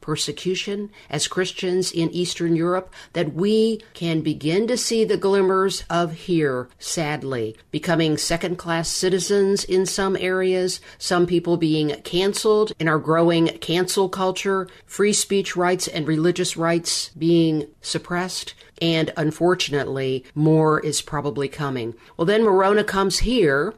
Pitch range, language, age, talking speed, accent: 155-190 Hz, English, 50-69, 130 wpm, American